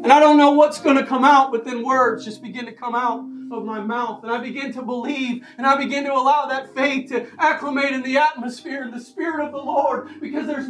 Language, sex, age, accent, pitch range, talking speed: English, male, 40-59, American, 255-315 Hz, 250 wpm